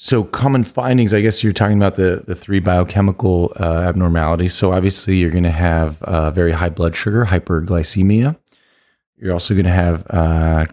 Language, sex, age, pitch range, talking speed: English, male, 30-49, 85-100 Hz, 170 wpm